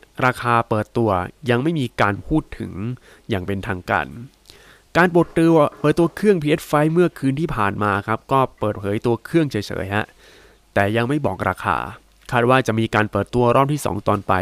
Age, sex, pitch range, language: 20-39, male, 100-130 Hz, Thai